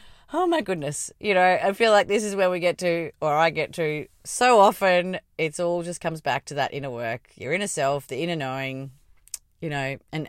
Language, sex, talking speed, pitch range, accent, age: English, female, 220 wpm, 145-185 Hz, Australian, 30-49